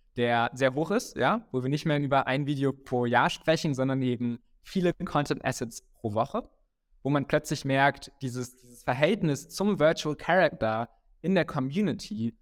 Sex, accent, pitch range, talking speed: male, German, 120-155 Hz, 170 wpm